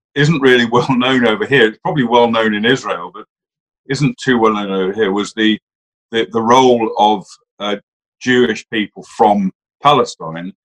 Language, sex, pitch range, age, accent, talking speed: English, male, 100-135 Hz, 50-69, British, 170 wpm